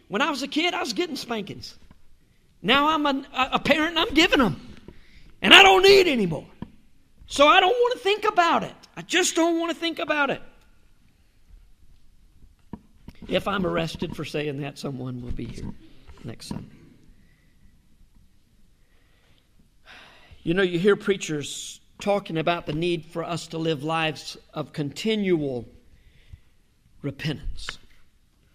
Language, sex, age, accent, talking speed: English, male, 50-69, American, 145 wpm